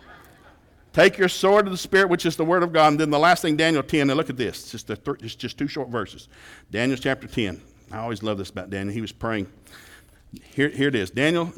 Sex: male